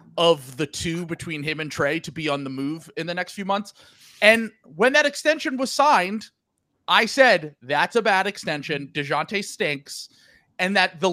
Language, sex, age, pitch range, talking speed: English, male, 30-49, 140-180 Hz, 185 wpm